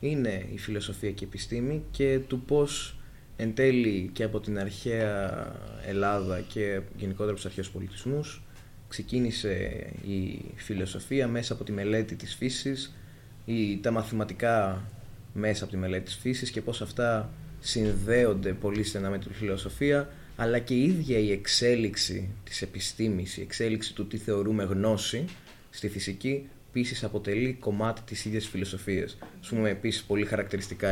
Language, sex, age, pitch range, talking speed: Greek, male, 20-39, 100-130 Hz, 140 wpm